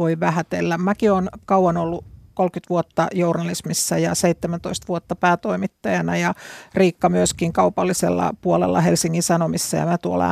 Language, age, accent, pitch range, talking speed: Finnish, 50-69, native, 160-180 Hz, 135 wpm